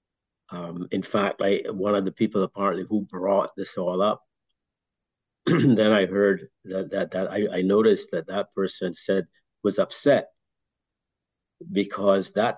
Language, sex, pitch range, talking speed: English, male, 95-105 Hz, 150 wpm